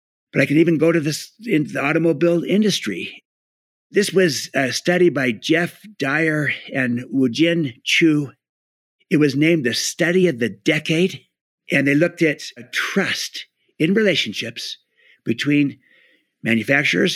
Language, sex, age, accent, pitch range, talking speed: English, male, 50-69, American, 135-170 Hz, 135 wpm